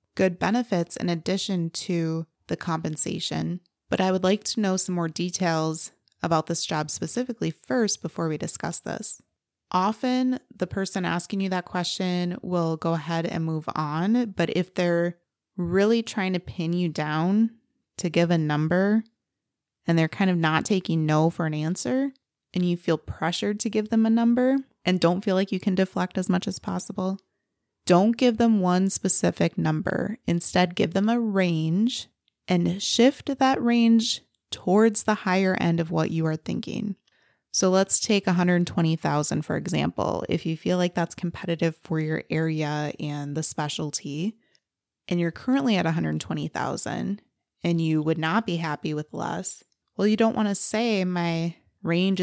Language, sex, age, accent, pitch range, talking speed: English, female, 20-39, American, 165-205 Hz, 165 wpm